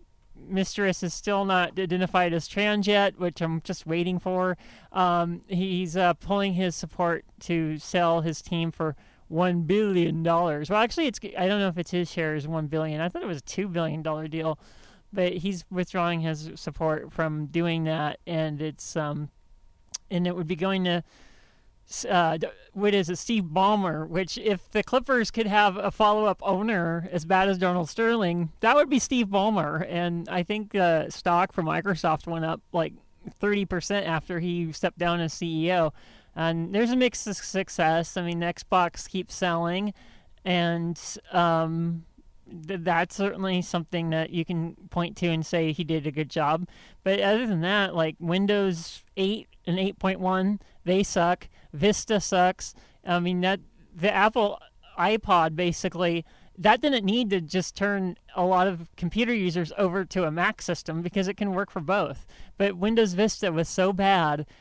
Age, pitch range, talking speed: 40-59, 165-195 Hz, 175 wpm